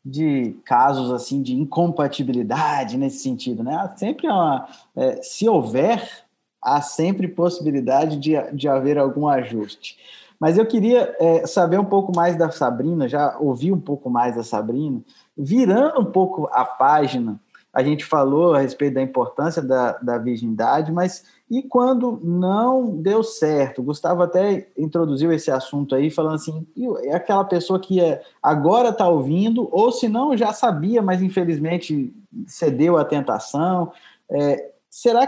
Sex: male